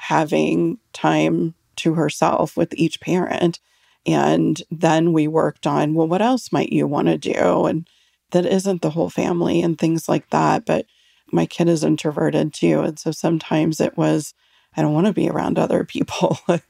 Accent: American